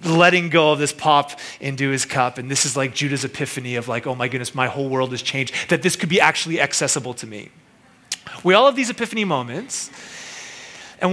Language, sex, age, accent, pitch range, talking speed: English, male, 30-49, American, 145-200 Hz, 210 wpm